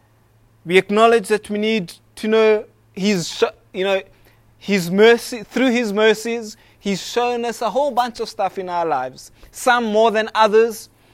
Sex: male